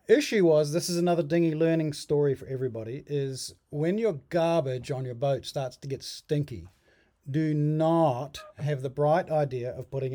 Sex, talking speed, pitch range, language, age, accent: male, 170 wpm, 140-175 Hz, English, 40-59, Australian